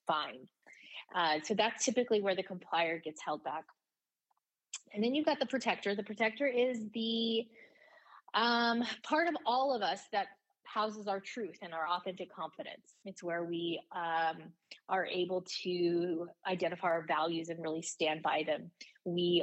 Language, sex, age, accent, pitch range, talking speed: English, female, 20-39, American, 165-210 Hz, 150 wpm